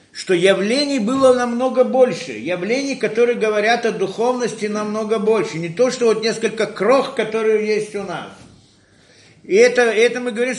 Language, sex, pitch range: Russian, male, 130-185 Hz